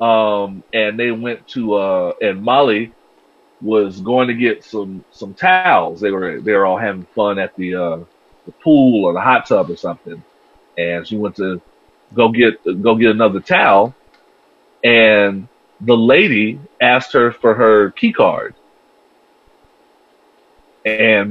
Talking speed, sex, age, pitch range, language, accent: 150 wpm, male, 40-59, 105-165 Hz, English, American